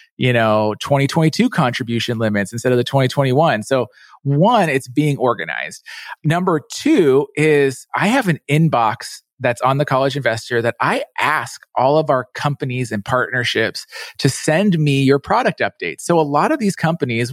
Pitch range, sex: 125-160 Hz, male